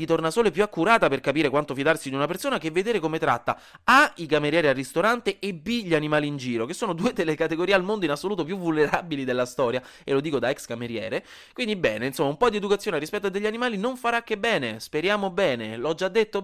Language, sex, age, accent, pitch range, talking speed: Italian, male, 20-39, native, 130-210 Hz, 235 wpm